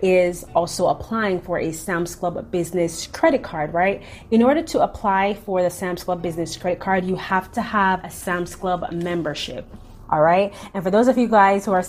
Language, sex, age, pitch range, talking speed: English, female, 30-49, 175-200 Hz, 195 wpm